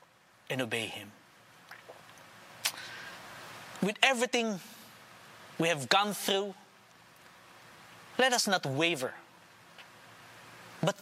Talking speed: 75 wpm